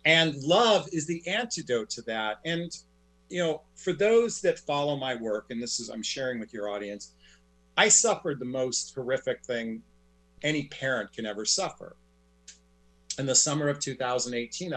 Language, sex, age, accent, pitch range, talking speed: English, male, 40-59, American, 105-165 Hz, 165 wpm